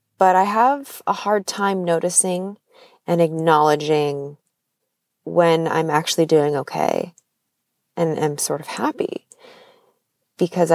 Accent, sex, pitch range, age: American, female, 160-205 Hz, 30-49